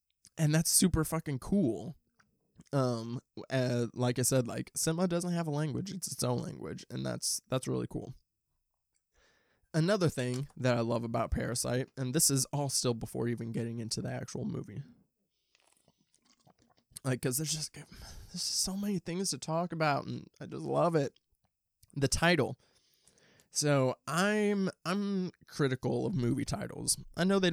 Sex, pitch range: male, 120-145 Hz